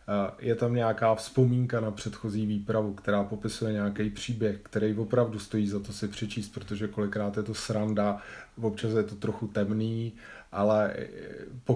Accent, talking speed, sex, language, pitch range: native, 155 wpm, male, Czech, 105-125 Hz